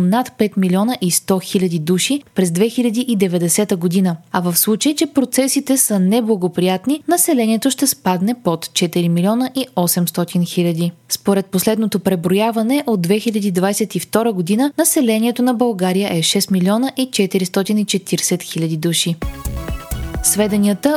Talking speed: 125 wpm